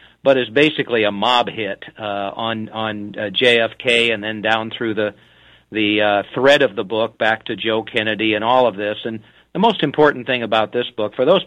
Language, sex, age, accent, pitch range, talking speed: English, male, 50-69, American, 110-130 Hz, 210 wpm